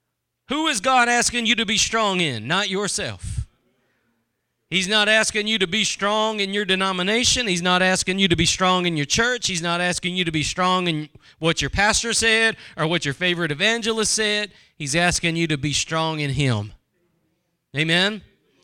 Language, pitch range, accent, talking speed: English, 170-225 Hz, American, 185 wpm